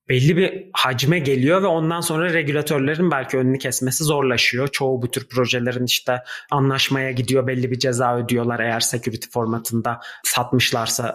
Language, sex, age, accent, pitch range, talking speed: Turkish, male, 30-49, native, 120-150 Hz, 145 wpm